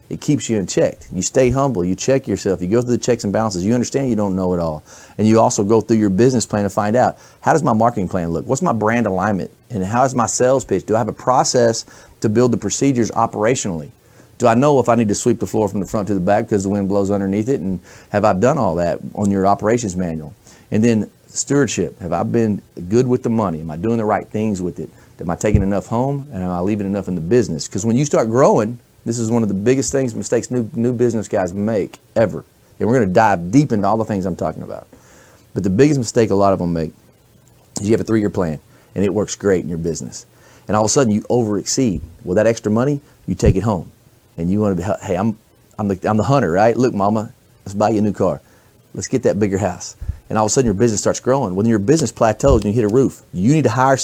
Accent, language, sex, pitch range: American, English, male, 100-120 Hz